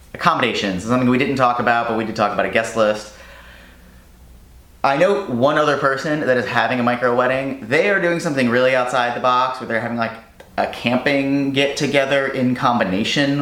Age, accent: 30-49, American